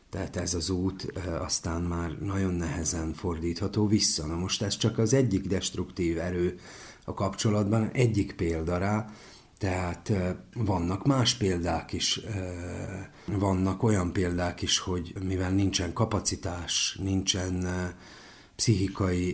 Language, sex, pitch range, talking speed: Hungarian, male, 90-110 Hz, 115 wpm